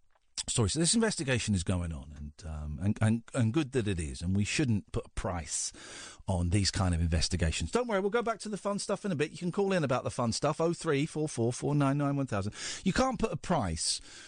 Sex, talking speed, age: male, 255 wpm, 40-59